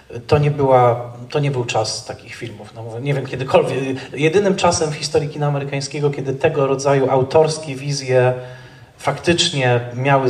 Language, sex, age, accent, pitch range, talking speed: Polish, male, 30-49, native, 115-135 Hz, 135 wpm